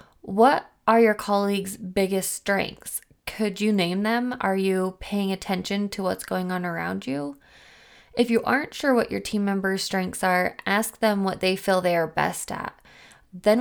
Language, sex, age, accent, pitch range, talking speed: English, female, 20-39, American, 185-215 Hz, 175 wpm